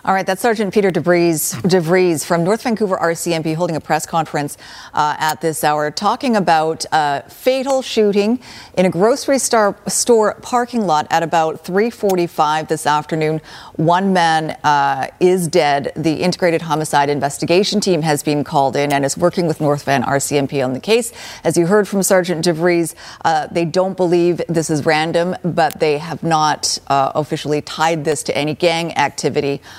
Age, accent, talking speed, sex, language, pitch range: 40-59, American, 170 wpm, female, English, 150-195 Hz